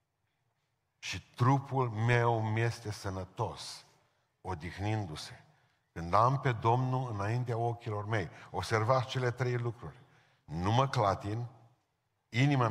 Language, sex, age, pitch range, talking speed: Romanian, male, 50-69, 110-135 Hz, 100 wpm